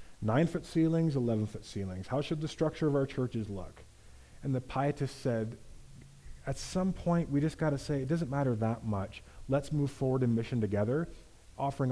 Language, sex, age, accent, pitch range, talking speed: English, male, 30-49, American, 110-145 Hz, 175 wpm